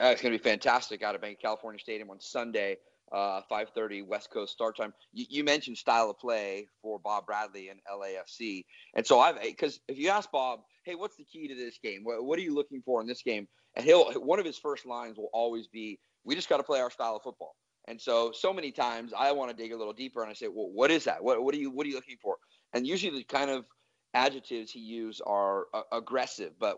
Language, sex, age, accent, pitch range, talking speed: English, male, 30-49, American, 115-145 Hz, 255 wpm